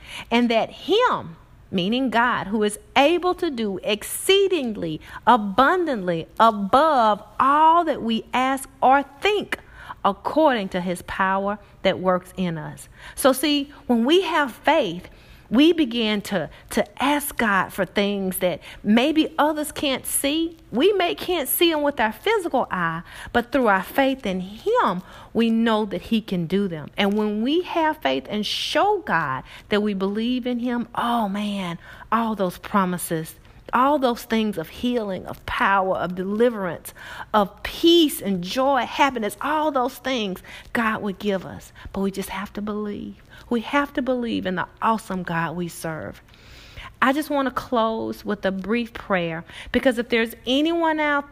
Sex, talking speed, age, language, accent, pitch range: female, 160 wpm, 40-59, English, American, 190-270 Hz